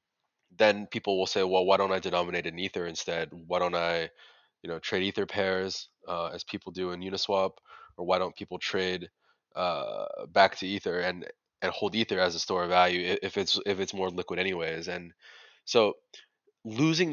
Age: 20-39